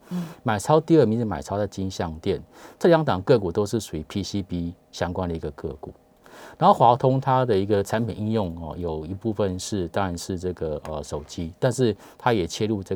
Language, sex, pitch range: Chinese, male, 85-115 Hz